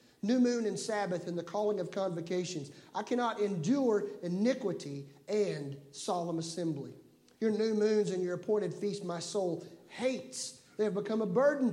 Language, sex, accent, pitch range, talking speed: English, male, American, 165-210 Hz, 160 wpm